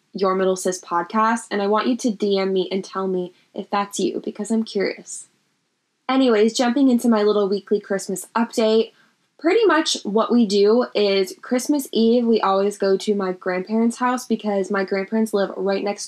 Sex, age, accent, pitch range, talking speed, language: female, 10-29, American, 195-220 Hz, 185 wpm, English